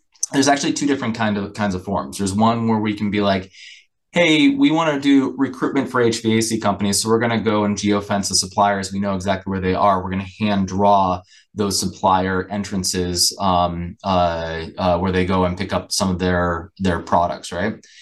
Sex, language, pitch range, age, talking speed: male, English, 95-110 Hz, 20-39, 195 wpm